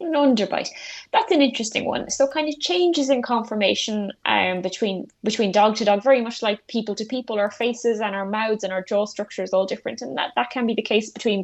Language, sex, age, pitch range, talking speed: English, female, 20-39, 195-245 Hz, 235 wpm